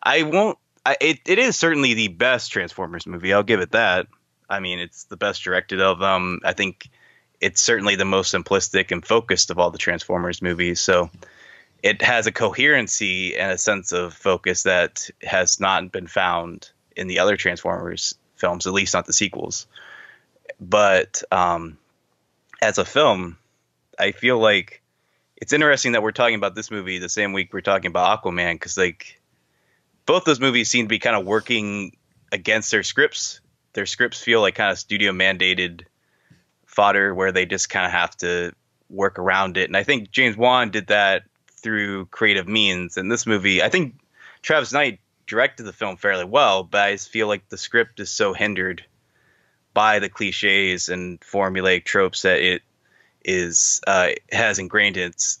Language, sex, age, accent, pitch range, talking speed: English, male, 20-39, American, 90-110 Hz, 180 wpm